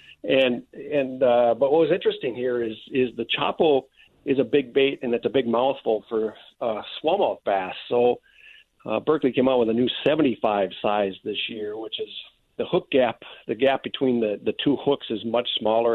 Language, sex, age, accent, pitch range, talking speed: English, male, 50-69, American, 115-140 Hz, 195 wpm